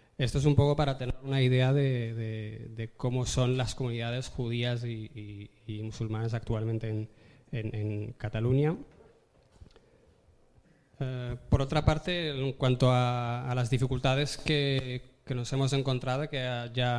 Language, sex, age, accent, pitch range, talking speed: Spanish, male, 20-39, Spanish, 115-130 Hz, 150 wpm